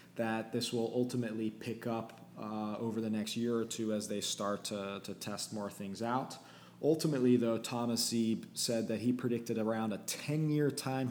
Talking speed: 190 wpm